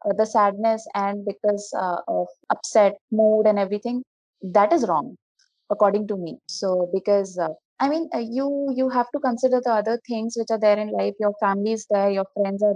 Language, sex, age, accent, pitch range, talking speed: Telugu, female, 20-39, native, 185-225 Hz, 200 wpm